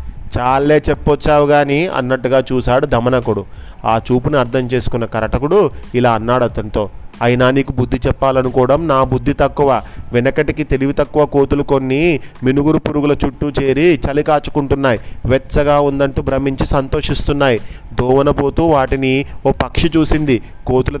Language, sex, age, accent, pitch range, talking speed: Telugu, male, 30-49, native, 120-150 Hz, 125 wpm